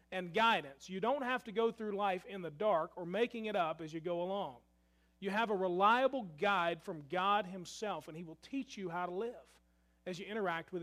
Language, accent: English, American